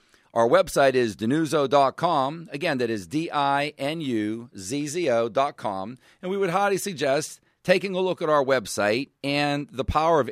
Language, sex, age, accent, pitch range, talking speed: English, male, 40-59, American, 120-160 Hz, 135 wpm